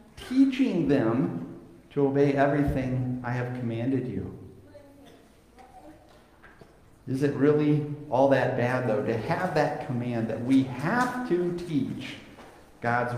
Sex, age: male, 50-69